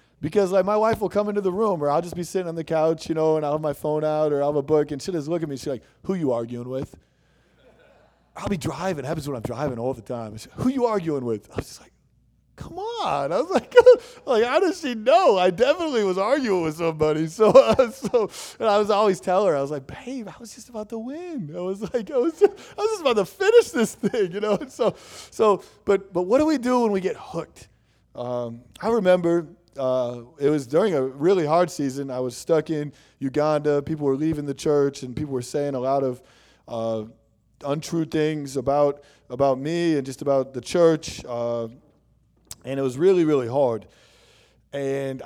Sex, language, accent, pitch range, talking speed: male, English, American, 125-185 Hz, 235 wpm